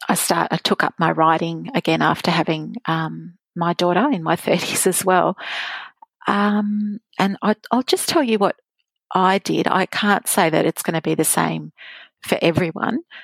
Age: 40-59